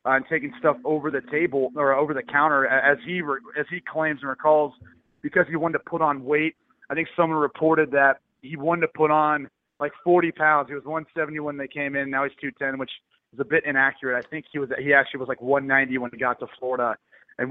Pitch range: 135-160 Hz